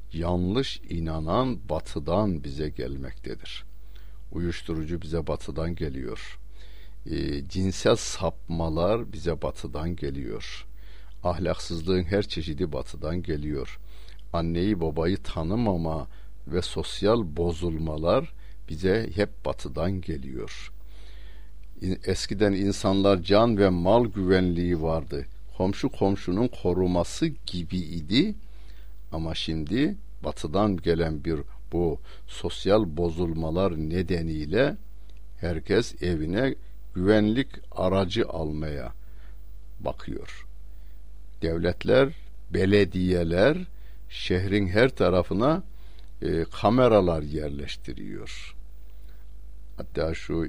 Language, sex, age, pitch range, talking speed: Turkish, male, 60-79, 80-100 Hz, 80 wpm